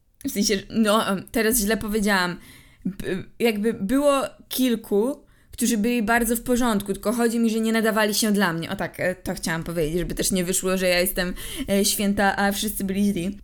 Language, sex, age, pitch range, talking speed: Polish, female, 20-39, 180-215 Hz, 180 wpm